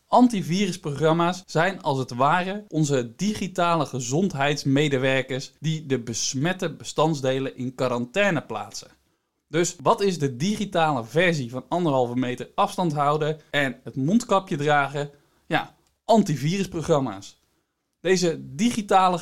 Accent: Dutch